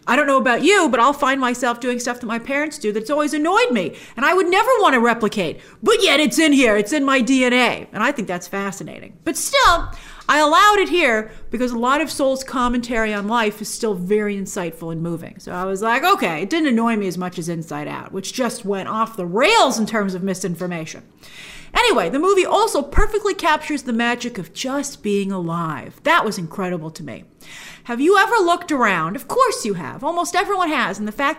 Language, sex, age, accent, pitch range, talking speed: English, female, 40-59, American, 195-285 Hz, 220 wpm